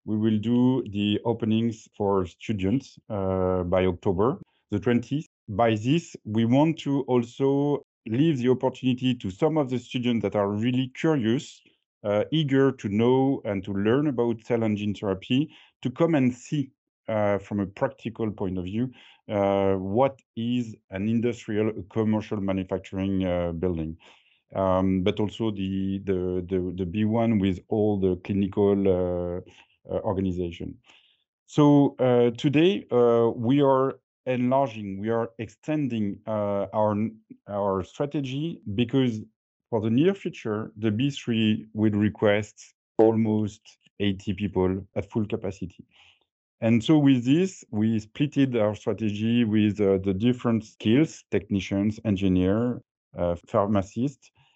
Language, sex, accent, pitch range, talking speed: English, male, French, 100-125 Hz, 135 wpm